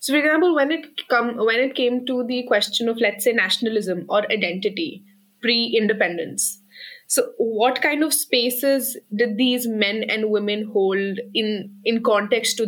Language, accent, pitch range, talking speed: English, Indian, 195-240 Hz, 165 wpm